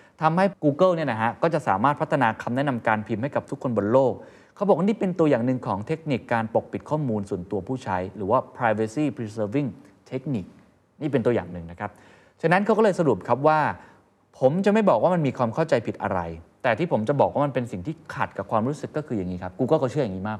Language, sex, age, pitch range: Thai, male, 20-39, 105-155 Hz